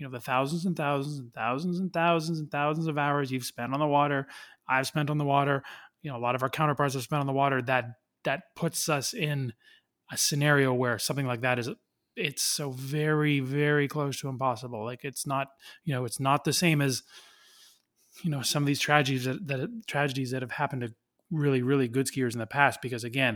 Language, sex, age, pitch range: English, male, 20-39, 130-155 Hz